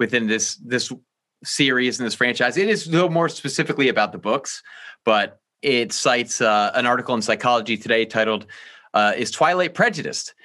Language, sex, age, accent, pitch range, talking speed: English, male, 30-49, American, 110-145 Hz, 165 wpm